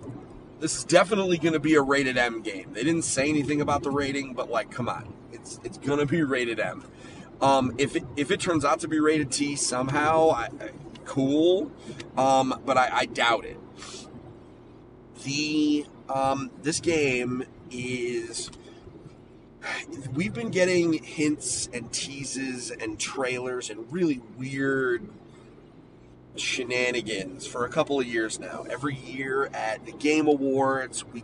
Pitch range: 120-150 Hz